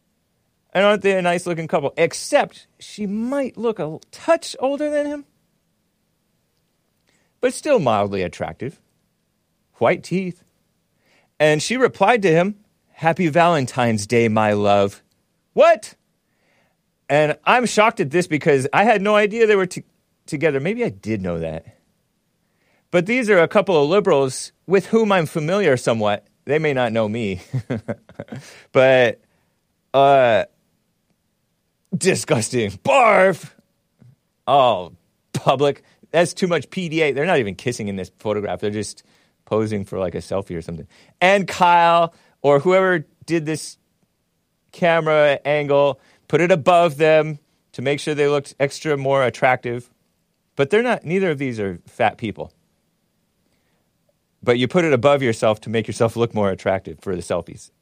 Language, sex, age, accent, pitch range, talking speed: English, male, 40-59, American, 120-185 Hz, 140 wpm